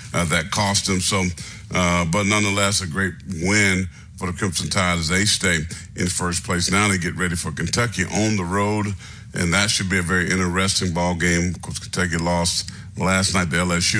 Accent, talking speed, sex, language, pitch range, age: American, 200 wpm, male, English, 90-110 Hz, 50-69